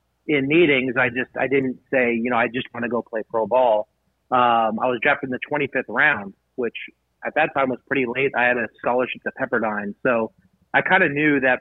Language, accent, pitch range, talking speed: English, American, 115-135 Hz, 225 wpm